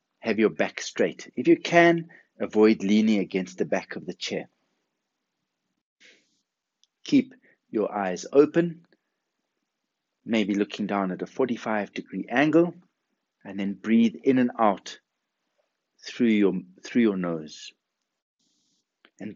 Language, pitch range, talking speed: English, 95-145 Hz, 120 wpm